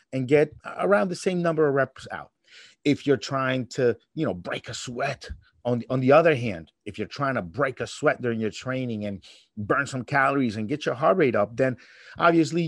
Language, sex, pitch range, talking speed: English, male, 115-150 Hz, 220 wpm